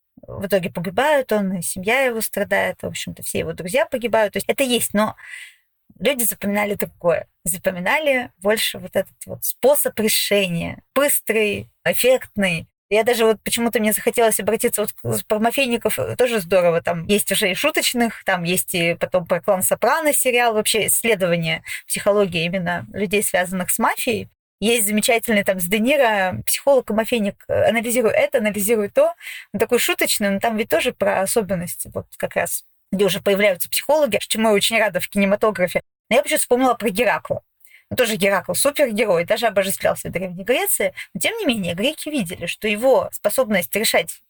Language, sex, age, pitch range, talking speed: Russian, female, 20-39, 195-255 Hz, 165 wpm